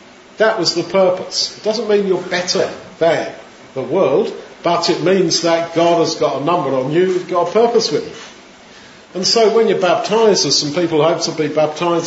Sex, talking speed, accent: male, 205 wpm, British